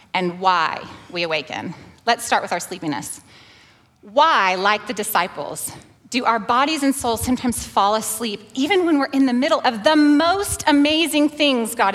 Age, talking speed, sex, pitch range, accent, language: 30-49, 165 wpm, female, 195-275 Hz, American, English